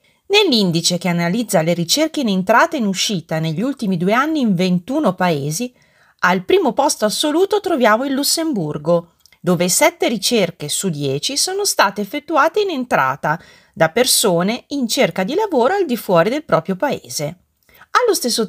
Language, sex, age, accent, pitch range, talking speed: Italian, female, 40-59, native, 170-275 Hz, 155 wpm